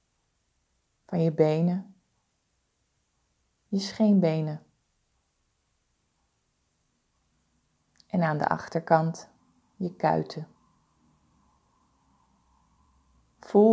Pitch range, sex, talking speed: 110-185 Hz, female, 50 wpm